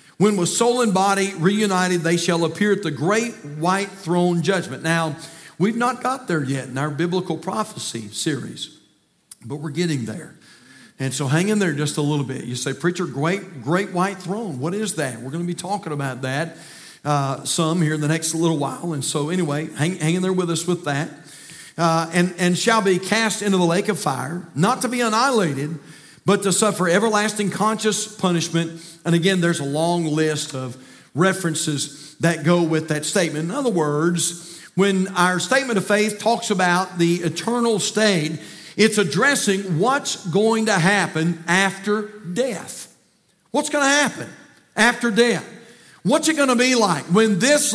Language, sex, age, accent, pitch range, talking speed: English, male, 50-69, American, 160-210 Hz, 180 wpm